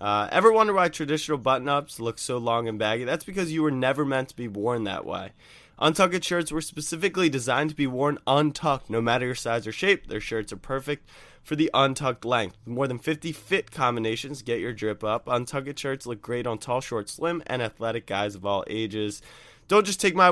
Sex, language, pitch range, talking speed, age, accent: male, English, 120-155 Hz, 215 wpm, 20-39, American